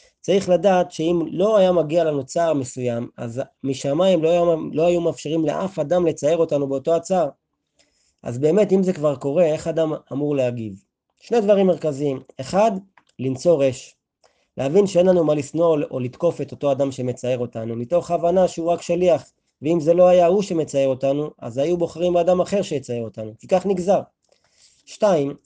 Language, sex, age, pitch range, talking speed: Hebrew, male, 30-49, 135-175 Hz, 170 wpm